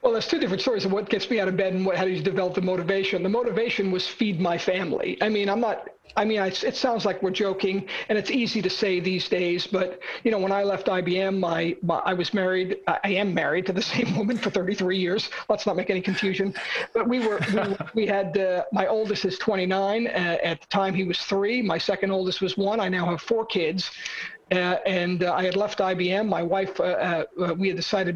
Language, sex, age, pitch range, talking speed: English, male, 50-69, 185-215 Hz, 245 wpm